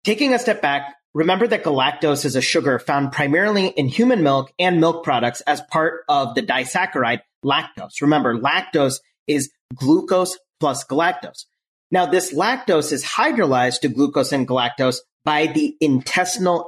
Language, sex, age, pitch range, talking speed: English, male, 30-49, 135-185 Hz, 150 wpm